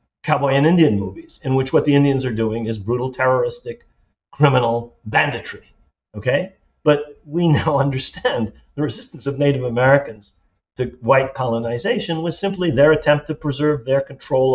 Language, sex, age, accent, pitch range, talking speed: English, male, 50-69, American, 110-145 Hz, 155 wpm